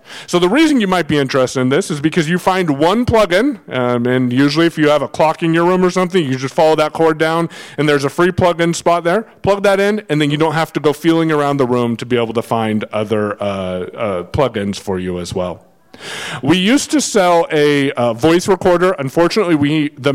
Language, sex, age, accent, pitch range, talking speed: English, male, 30-49, American, 130-175 Hz, 245 wpm